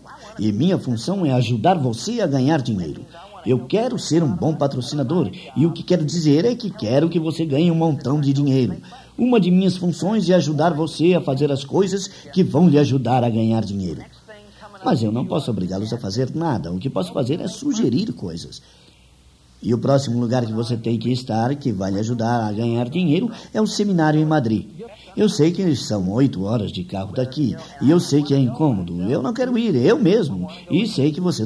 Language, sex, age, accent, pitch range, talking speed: Portuguese, male, 50-69, Brazilian, 120-175 Hz, 210 wpm